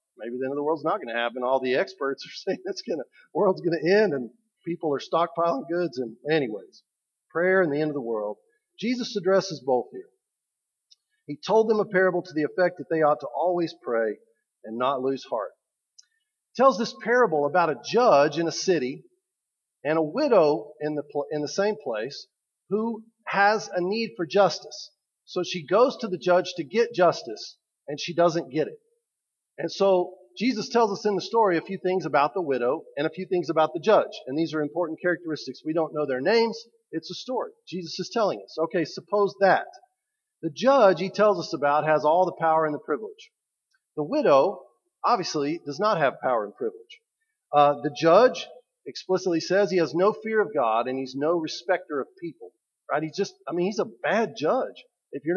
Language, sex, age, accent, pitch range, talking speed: English, male, 40-59, American, 155-225 Hz, 205 wpm